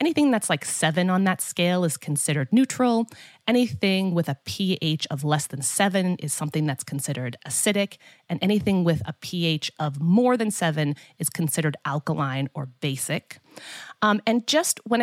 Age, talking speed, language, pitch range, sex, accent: 30-49, 165 wpm, English, 145-195 Hz, female, American